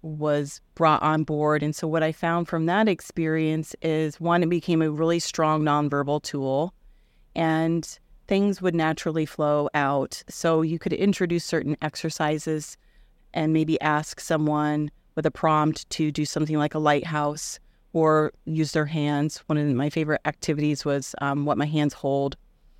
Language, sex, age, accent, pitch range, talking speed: English, female, 30-49, American, 150-165 Hz, 160 wpm